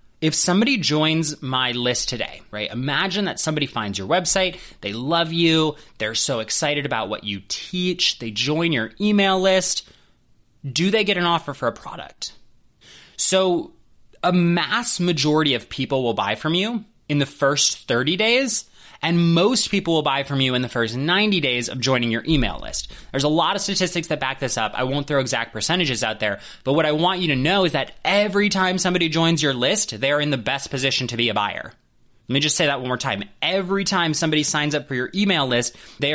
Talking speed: 210 wpm